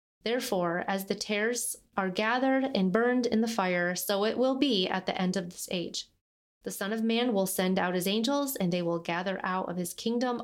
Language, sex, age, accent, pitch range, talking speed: English, female, 30-49, American, 180-225 Hz, 220 wpm